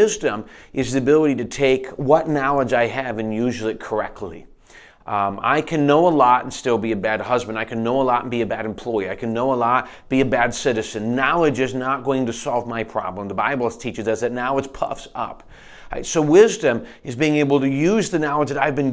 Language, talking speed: English, 240 wpm